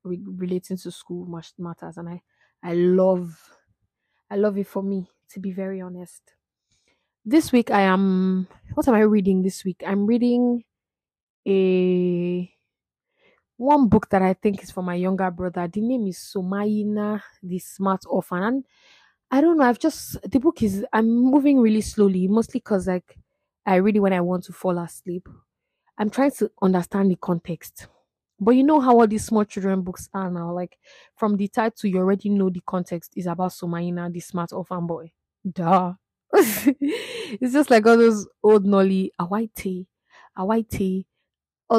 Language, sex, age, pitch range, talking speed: English, female, 20-39, 180-225 Hz, 165 wpm